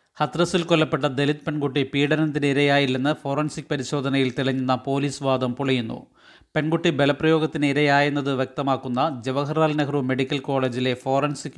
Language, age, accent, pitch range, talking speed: Malayalam, 30-49, native, 135-150 Hz, 100 wpm